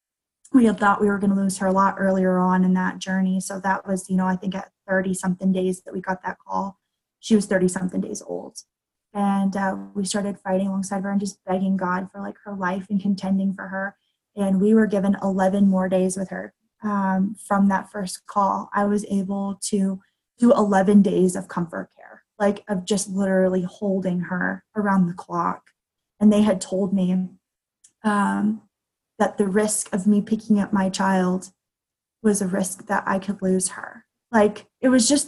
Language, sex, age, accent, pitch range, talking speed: English, female, 20-39, American, 190-210 Hz, 200 wpm